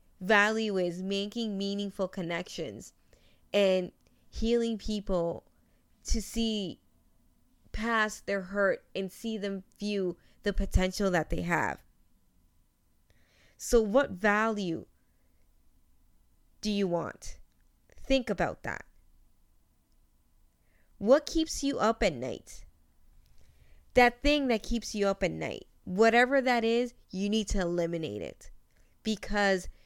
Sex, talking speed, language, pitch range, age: female, 110 wpm, English, 170-220 Hz, 20-39